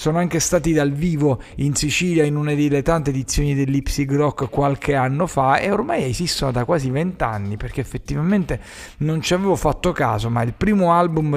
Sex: male